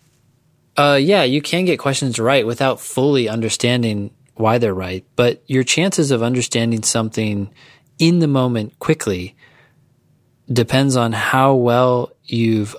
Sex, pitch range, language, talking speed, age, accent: male, 110-130 Hz, English, 130 wpm, 20-39, American